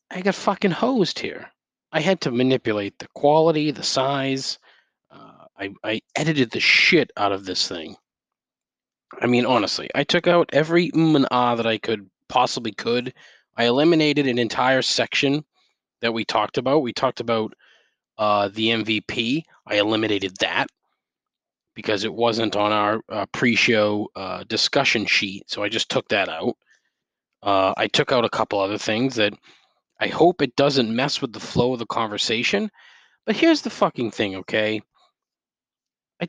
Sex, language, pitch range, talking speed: male, English, 105-130 Hz, 160 wpm